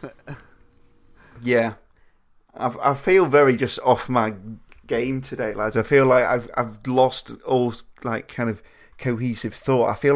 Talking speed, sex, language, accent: 150 wpm, male, English, British